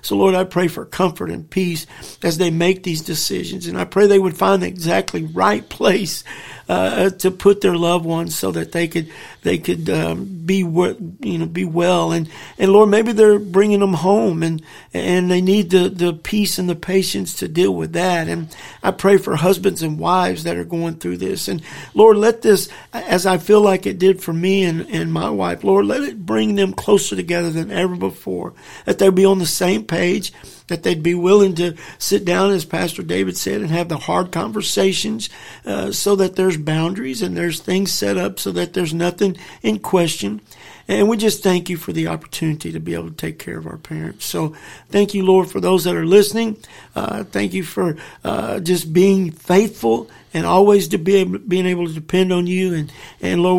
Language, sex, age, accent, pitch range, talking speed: English, male, 50-69, American, 160-190 Hz, 215 wpm